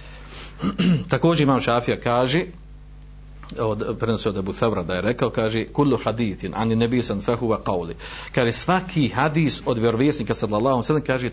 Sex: male